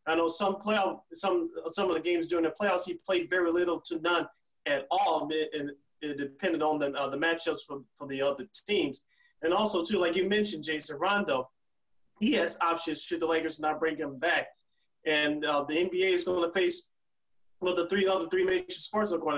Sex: male